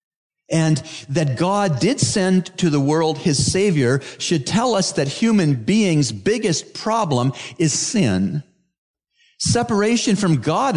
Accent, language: American, English